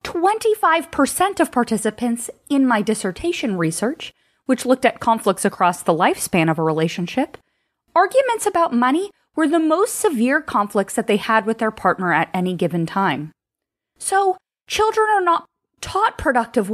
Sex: female